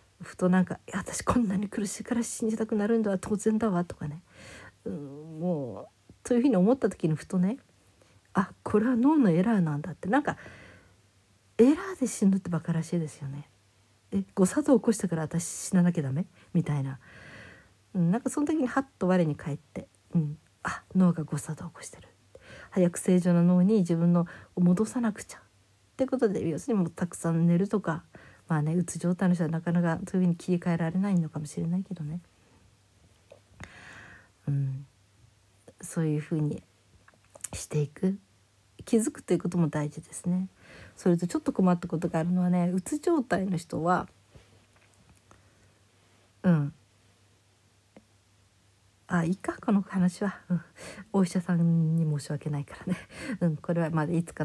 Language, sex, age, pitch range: Japanese, female, 50-69, 130-185 Hz